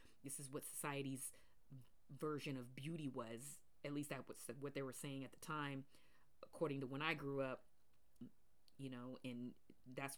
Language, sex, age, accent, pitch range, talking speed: English, female, 30-49, American, 130-160 Hz, 170 wpm